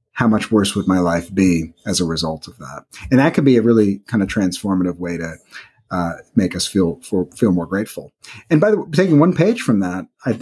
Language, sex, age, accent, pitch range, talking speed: English, male, 30-49, American, 100-135 Hz, 225 wpm